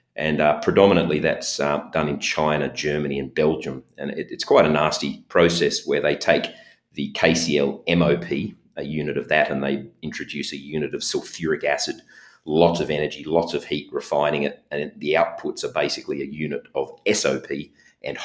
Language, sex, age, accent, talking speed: English, male, 30-49, Australian, 175 wpm